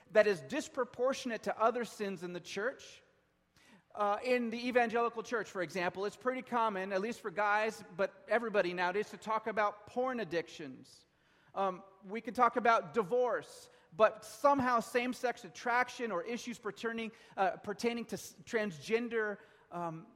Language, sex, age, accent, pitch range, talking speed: English, male, 40-59, American, 175-230 Hz, 145 wpm